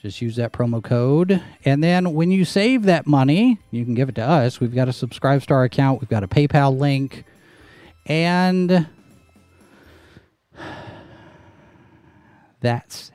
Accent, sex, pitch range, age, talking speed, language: American, male, 120-165 Hz, 40-59, 135 wpm, English